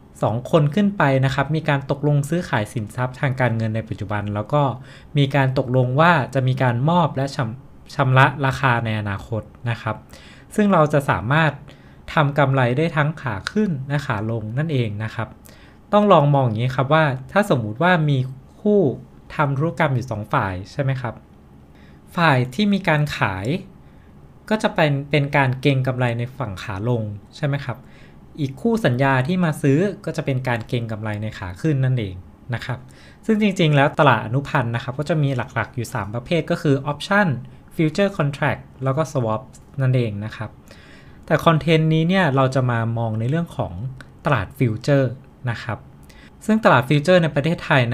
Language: Thai